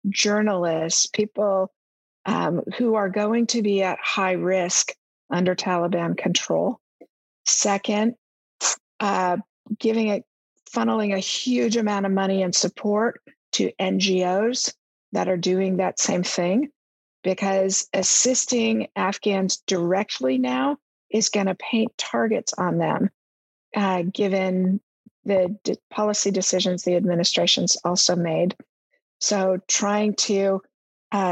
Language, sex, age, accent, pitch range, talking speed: English, female, 50-69, American, 185-215 Hz, 115 wpm